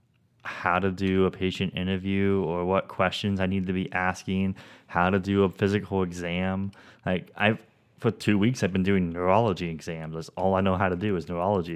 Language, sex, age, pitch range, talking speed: English, male, 20-39, 95-125 Hz, 200 wpm